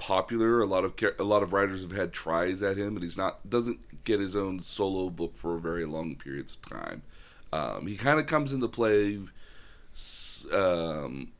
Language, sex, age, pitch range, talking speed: English, male, 30-49, 90-115 Hz, 195 wpm